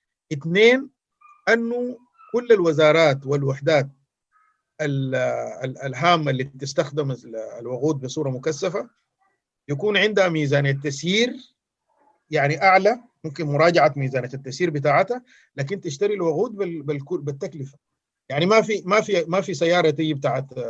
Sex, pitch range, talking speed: male, 140-200 Hz, 105 wpm